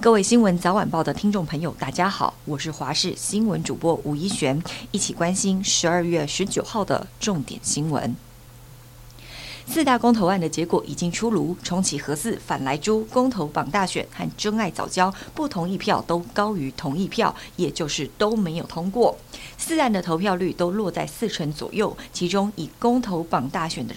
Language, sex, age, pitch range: Chinese, female, 50-69, 155-215 Hz